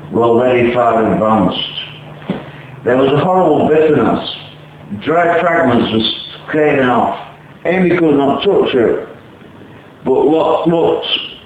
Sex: male